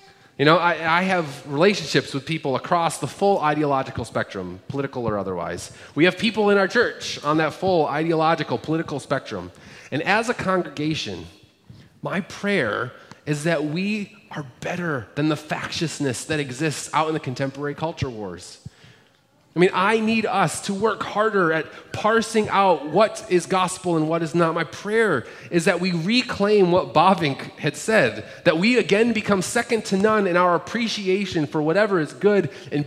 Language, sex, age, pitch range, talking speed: English, male, 30-49, 135-185 Hz, 170 wpm